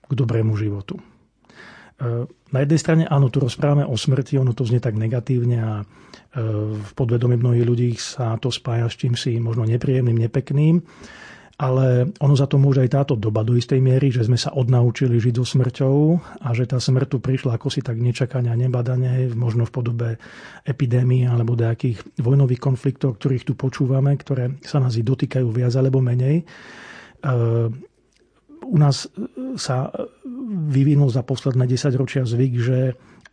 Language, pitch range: Slovak, 125-140 Hz